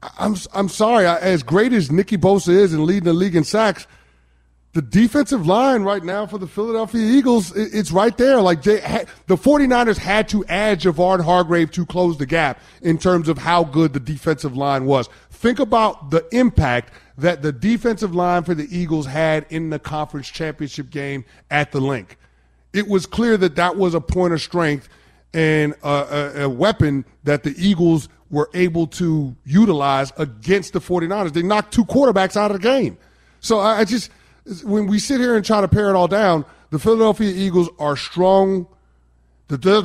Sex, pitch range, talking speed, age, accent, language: male, 145-200 Hz, 190 wpm, 30-49, American, English